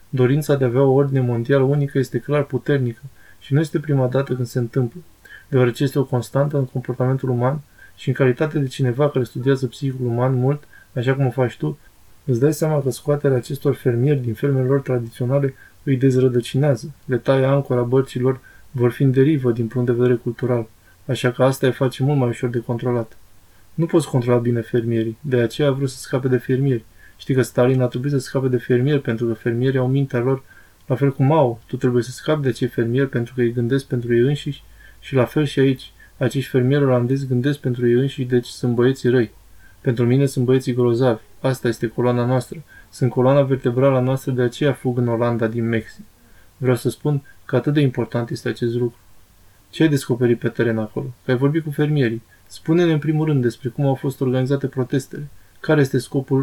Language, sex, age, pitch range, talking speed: Romanian, male, 20-39, 120-140 Hz, 205 wpm